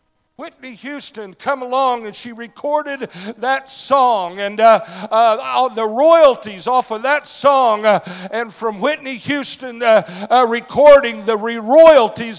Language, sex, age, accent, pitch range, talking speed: English, male, 60-79, American, 210-265 Hz, 140 wpm